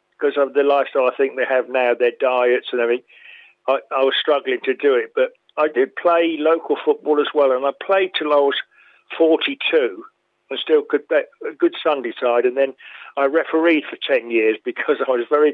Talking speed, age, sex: 210 wpm, 50-69, male